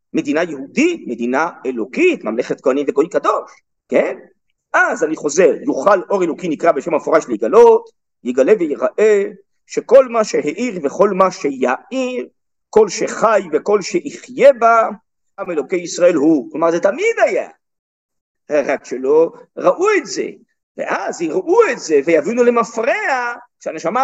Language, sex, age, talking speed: Hebrew, male, 50-69, 130 wpm